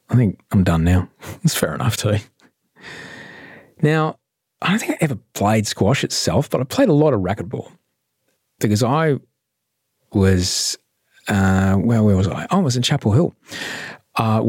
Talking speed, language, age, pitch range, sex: 165 wpm, English, 30-49, 90-115 Hz, male